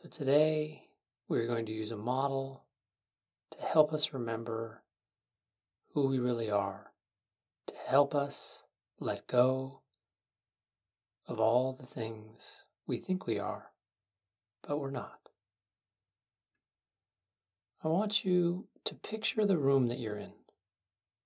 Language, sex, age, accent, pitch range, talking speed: English, male, 40-59, American, 95-130 Hz, 120 wpm